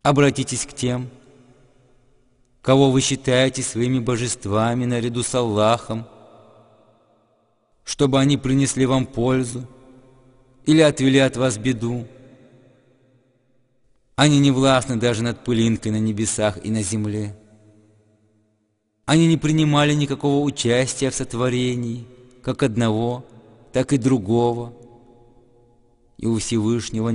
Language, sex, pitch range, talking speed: English, male, 105-125 Hz, 105 wpm